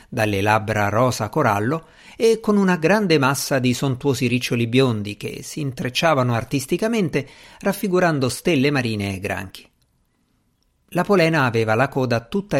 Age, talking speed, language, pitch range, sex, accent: 50-69, 135 wpm, Italian, 115-165 Hz, male, native